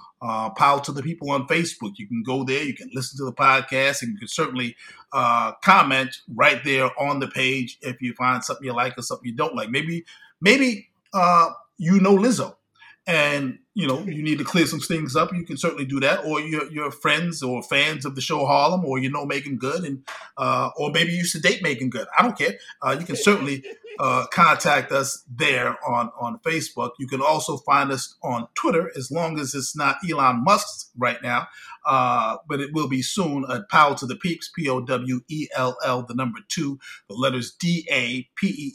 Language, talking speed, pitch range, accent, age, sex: English, 210 wpm, 130-170 Hz, American, 30-49, male